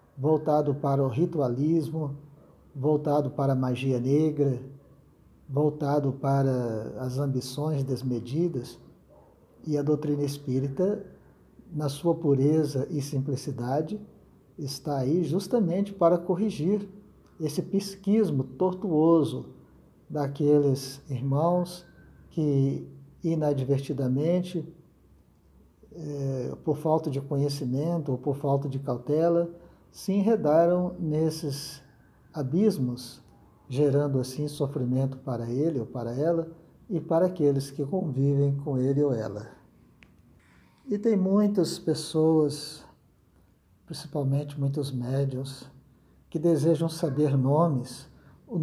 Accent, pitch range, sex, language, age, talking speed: Brazilian, 135-165 Hz, male, Portuguese, 50-69, 95 wpm